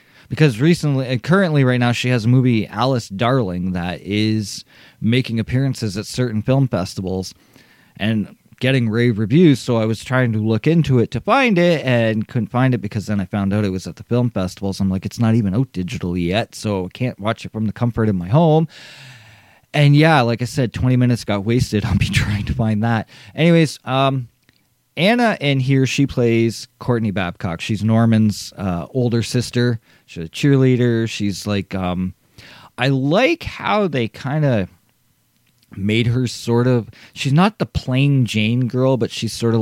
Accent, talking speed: American, 190 wpm